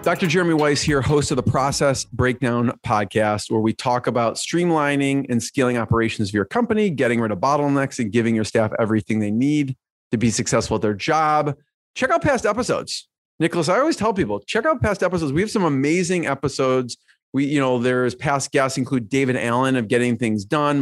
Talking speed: 200 wpm